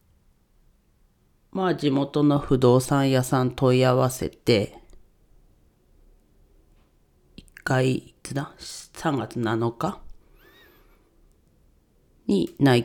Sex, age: female, 40-59